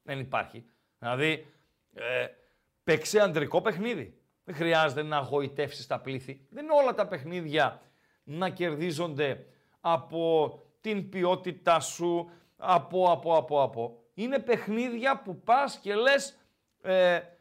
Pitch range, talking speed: 160-225 Hz, 120 wpm